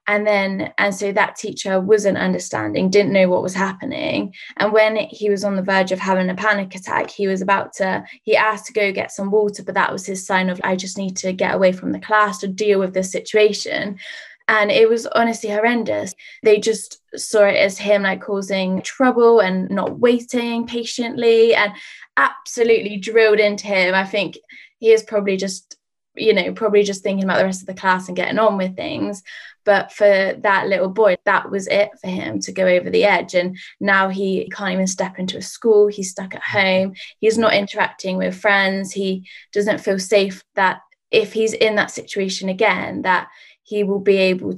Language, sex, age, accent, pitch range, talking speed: English, female, 10-29, British, 190-215 Hz, 200 wpm